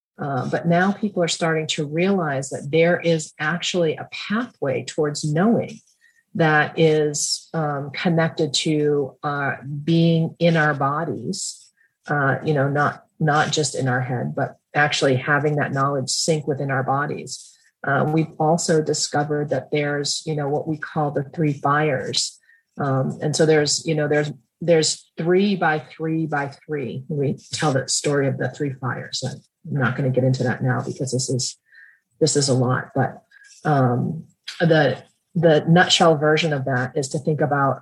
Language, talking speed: English, 170 wpm